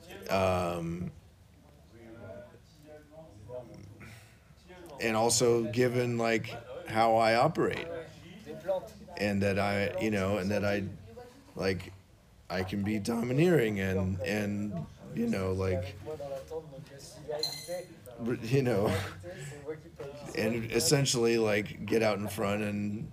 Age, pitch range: 40-59, 95-120 Hz